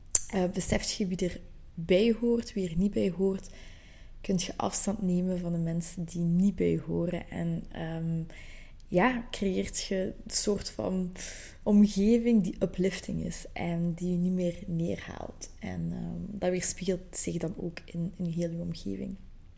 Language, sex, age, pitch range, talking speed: Dutch, female, 20-39, 175-195 Hz, 170 wpm